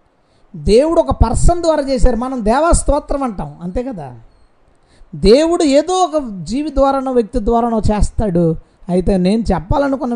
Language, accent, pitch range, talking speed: Telugu, native, 165-235 Hz, 125 wpm